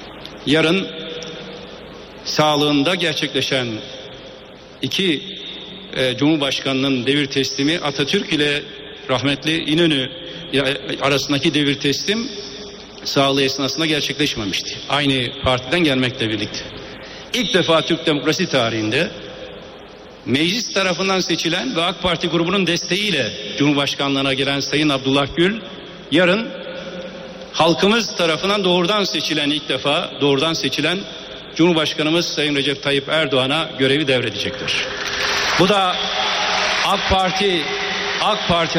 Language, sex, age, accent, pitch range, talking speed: Turkish, male, 60-79, native, 140-175 Hz, 95 wpm